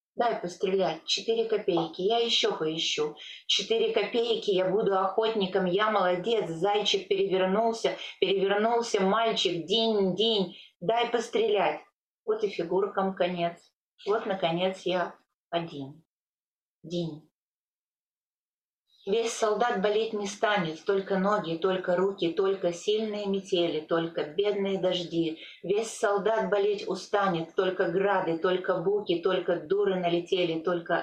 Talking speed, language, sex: 110 wpm, Russian, female